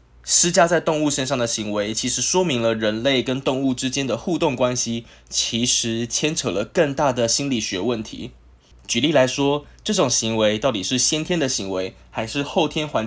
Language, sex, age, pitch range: Chinese, male, 20-39, 105-140 Hz